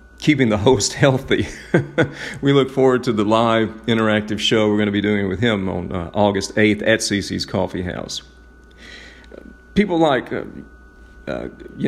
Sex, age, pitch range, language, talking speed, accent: male, 40-59, 90-120 Hz, English, 160 wpm, American